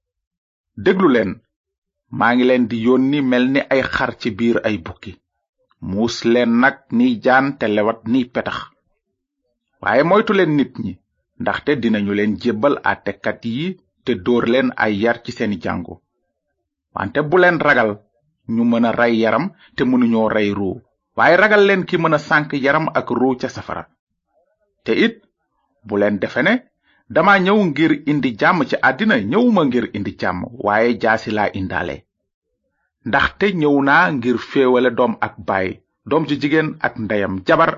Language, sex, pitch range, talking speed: French, male, 105-155 Hz, 130 wpm